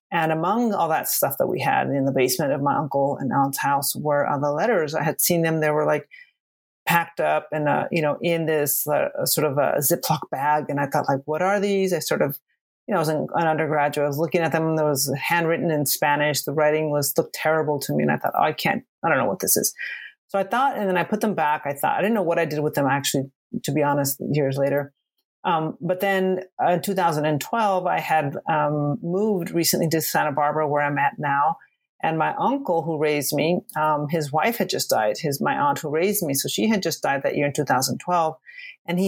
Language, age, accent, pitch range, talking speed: English, 30-49, American, 145-175 Hz, 245 wpm